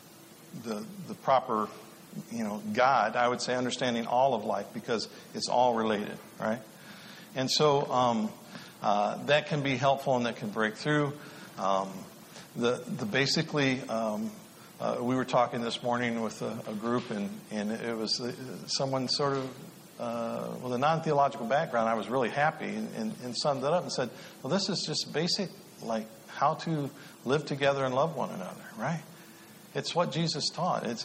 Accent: American